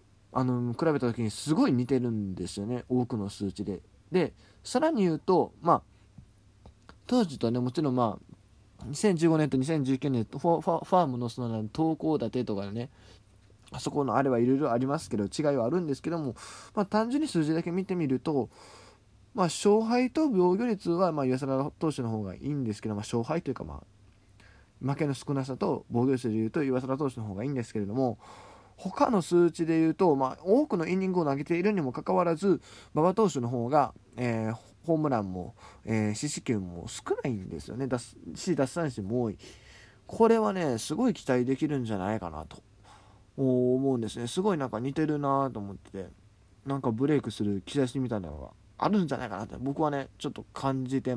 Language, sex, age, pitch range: Japanese, male, 20-39, 105-155 Hz